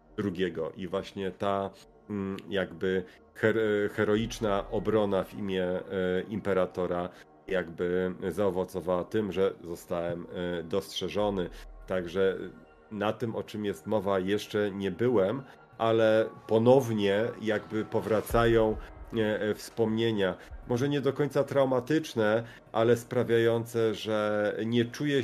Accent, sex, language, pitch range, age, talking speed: native, male, Polish, 95-115 Hz, 40-59, 95 wpm